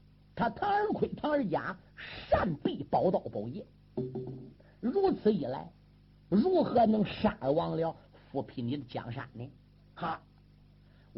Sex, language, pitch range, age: male, Chinese, 140-215 Hz, 50-69